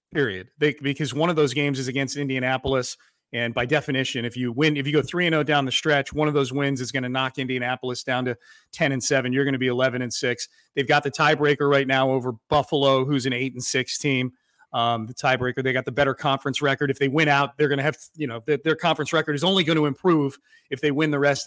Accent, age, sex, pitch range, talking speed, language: American, 30-49, male, 135-160 Hz, 250 wpm, English